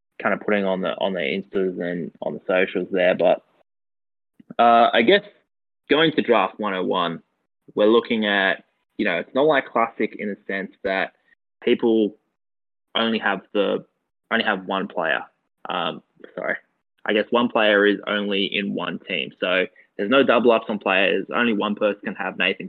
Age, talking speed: 20-39, 175 wpm